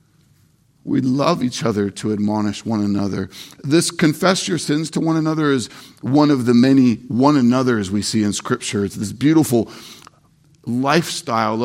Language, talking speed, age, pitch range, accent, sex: English, 155 wpm, 50-69, 110-150 Hz, American, male